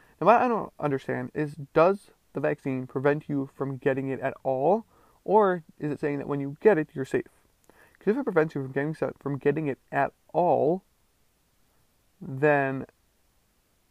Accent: American